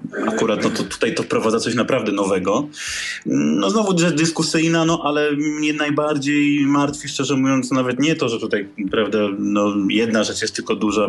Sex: male